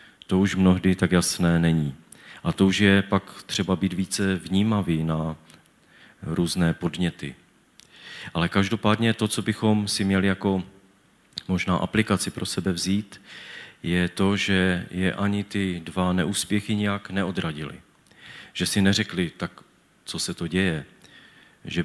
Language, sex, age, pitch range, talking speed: Czech, male, 40-59, 90-100 Hz, 135 wpm